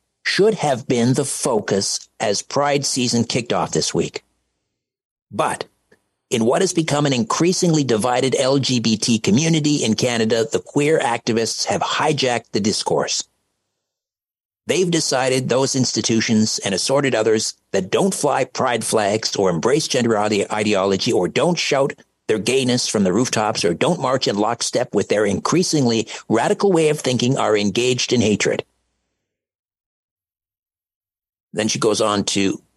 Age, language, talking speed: 50-69, English, 140 wpm